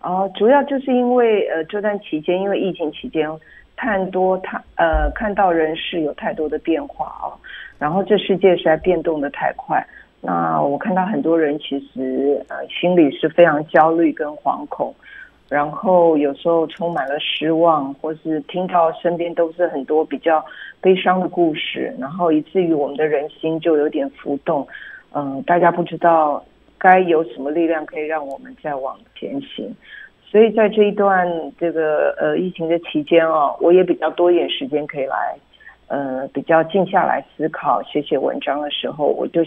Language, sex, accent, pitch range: Chinese, female, native, 155-185 Hz